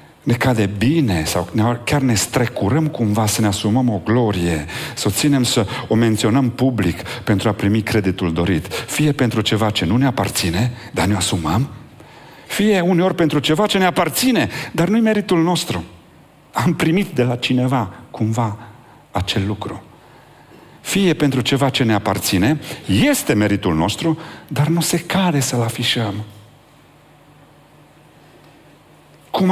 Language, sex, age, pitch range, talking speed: Romanian, male, 50-69, 100-145 Hz, 145 wpm